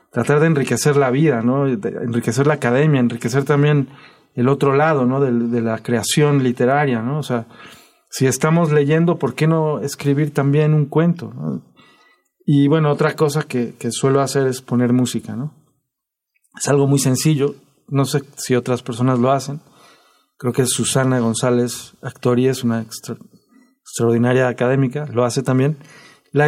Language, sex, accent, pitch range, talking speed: Spanish, male, Mexican, 125-150 Hz, 165 wpm